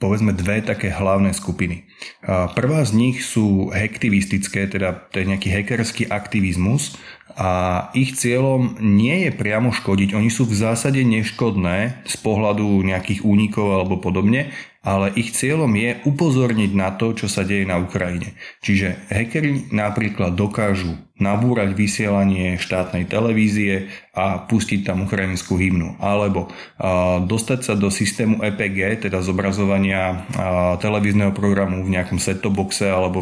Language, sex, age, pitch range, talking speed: Slovak, male, 20-39, 95-110 Hz, 135 wpm